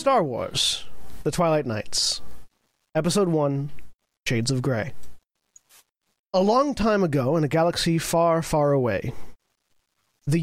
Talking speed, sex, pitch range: 120 wpm, male, 140-190 Hz